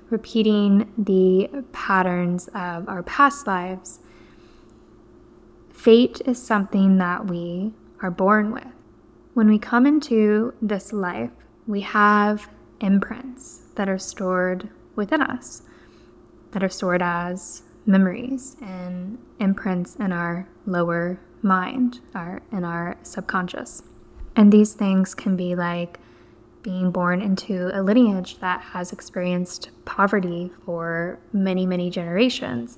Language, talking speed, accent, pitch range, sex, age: English, 115 wpm, American, 180-210 Hz, female, 10-29